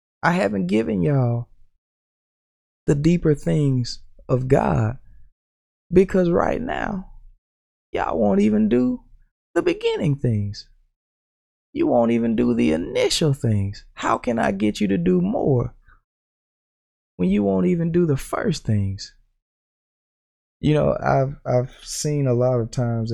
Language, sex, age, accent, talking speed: English, male, 20-39, American, 130 wpm